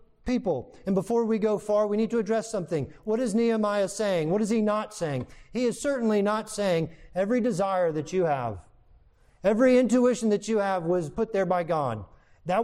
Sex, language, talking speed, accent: male, English, 195 wpm, American